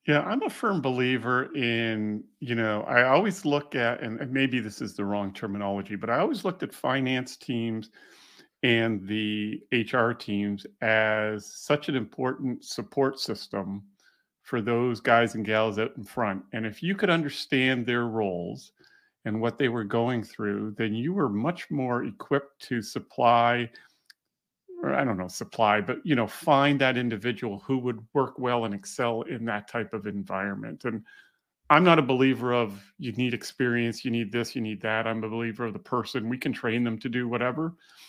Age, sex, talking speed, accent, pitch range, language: 50-69, male, 180 wpm, American, 115-145 Hz, English